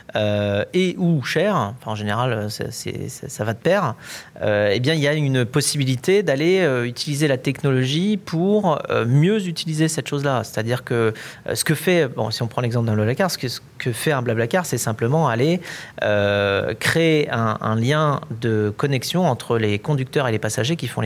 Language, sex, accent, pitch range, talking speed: French, male, French, 110-140 Hz, 200 wpm